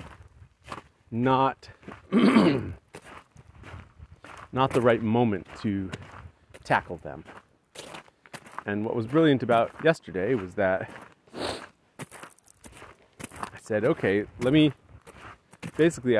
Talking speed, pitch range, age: 80 wpm, 100-125 Hz, 30-49